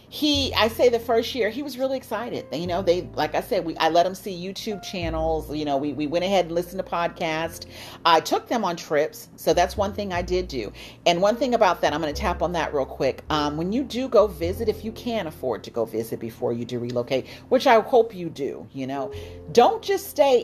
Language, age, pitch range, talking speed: English, 40-59, 150-235 Hz, 250 wpm